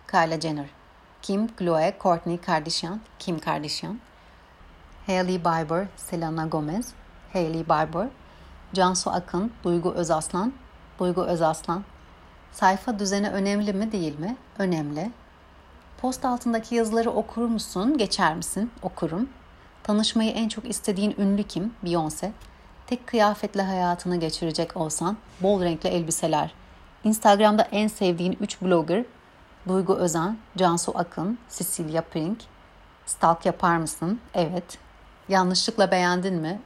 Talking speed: 110 wpm